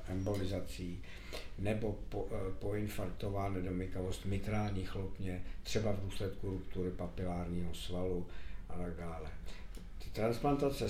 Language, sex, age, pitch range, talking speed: Czech, male, 60-79, 90-110 Hz, 90 wpm